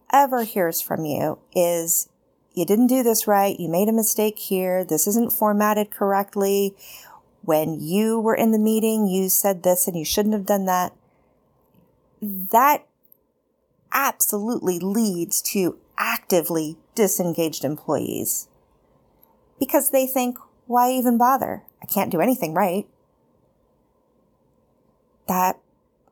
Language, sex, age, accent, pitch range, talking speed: English, female, 30-49, American, 175-225 Hz, 120 wpm